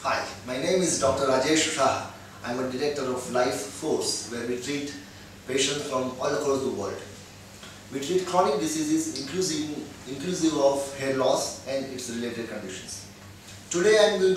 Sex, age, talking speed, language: male, 30-49, 165 wpm, English